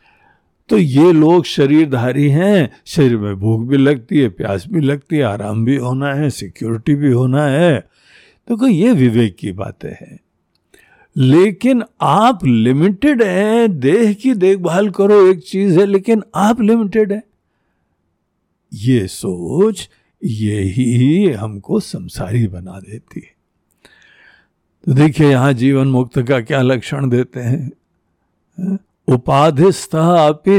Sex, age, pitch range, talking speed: male, 60-79, 120-190 Hz, 130 wpm